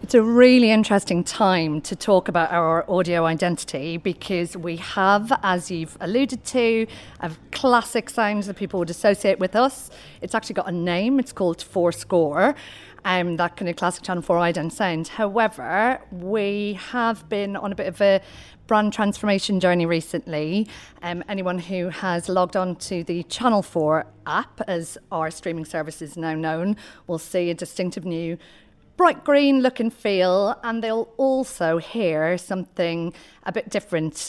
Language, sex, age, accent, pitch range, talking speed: English, female, 40-59, British, 170-210 Hz, 160 wpm